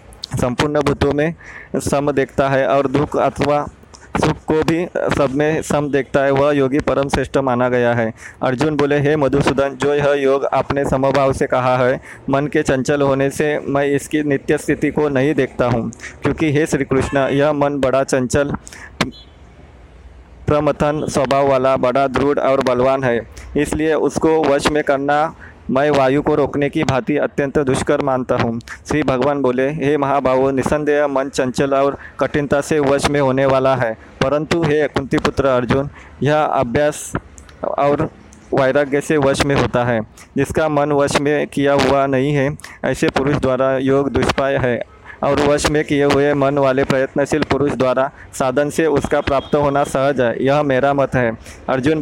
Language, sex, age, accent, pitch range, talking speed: Hindi, male, 20-39, native, 135-145 Hz, 160 wpm